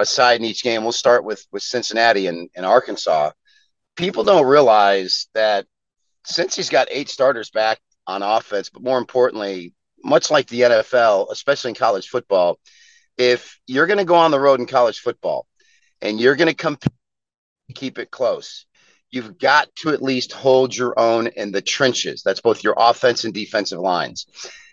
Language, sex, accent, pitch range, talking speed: English, male, American, 115-150 Hz, 170 wpm